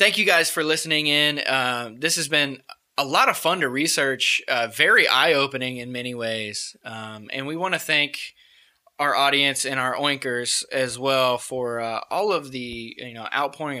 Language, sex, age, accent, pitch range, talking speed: English, male, 20-39, American, 120-150 Hz, 185 wpm